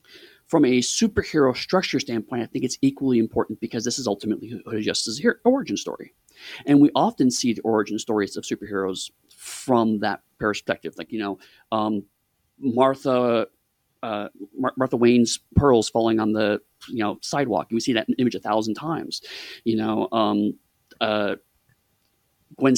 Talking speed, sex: 155 wpm, male